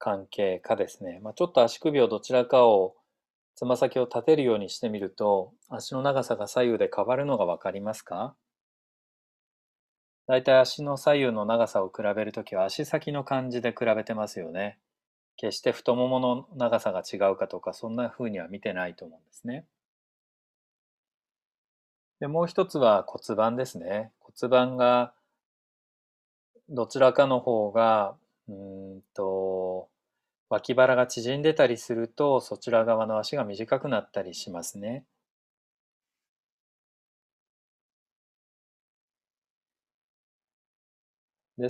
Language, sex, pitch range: Japanese, male, 110-135 Hz